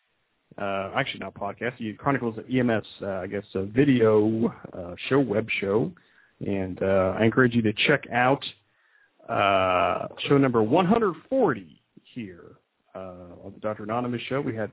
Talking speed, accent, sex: 155 wpm, American, male